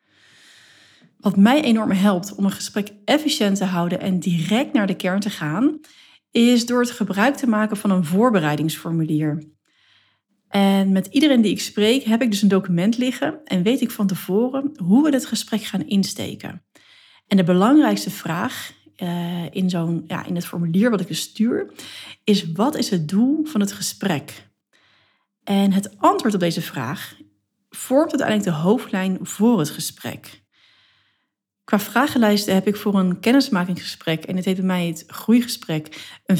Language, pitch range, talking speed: Dutch, 185-240 Hz, 160 wpm